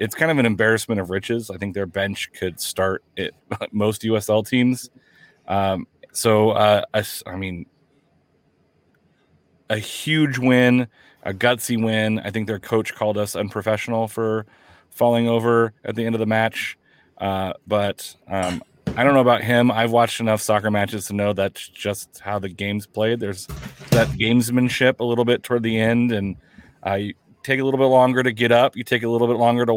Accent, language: American, English